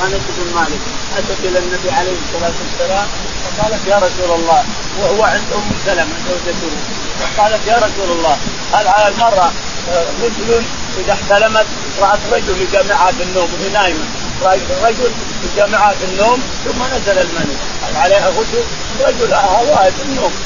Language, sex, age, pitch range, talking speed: Arabic, male, 30-49, 185-230 Hz, 140 wpm